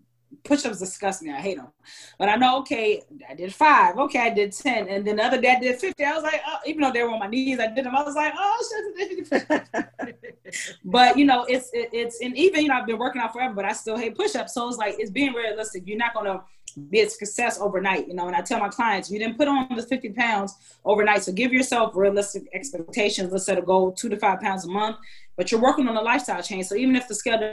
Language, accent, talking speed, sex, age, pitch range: English, American, 255 wpm, female, 20-39, 195-255 Hz